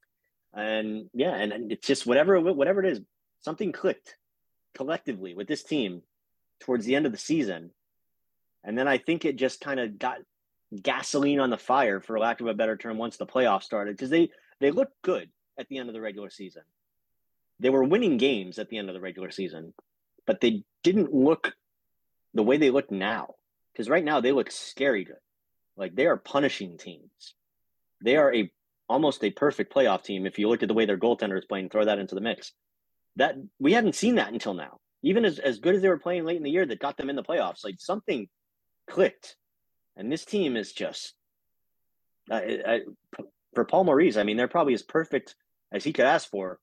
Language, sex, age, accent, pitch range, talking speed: English, male, 30-49, American, 100-135 Hz, 205 wpm